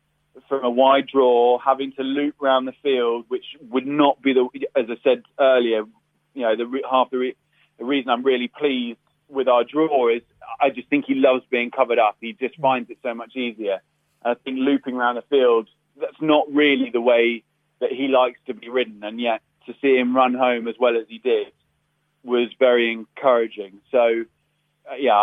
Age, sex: 30-49, male